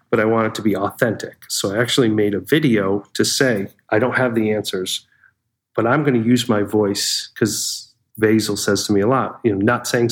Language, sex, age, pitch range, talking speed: English, male, 30-49, 100-115 Hz, 225 wpm